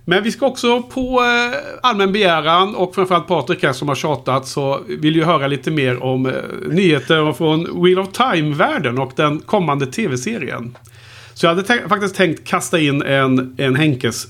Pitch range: 125-170 Hz